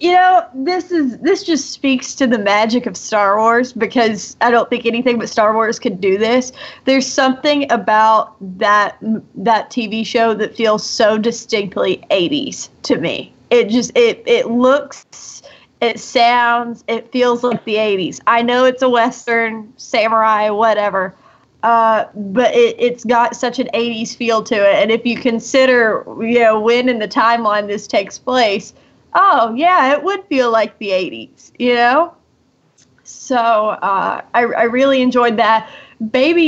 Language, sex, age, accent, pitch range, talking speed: English, female, 30-49, American, 220-255 Hz, 165 wpm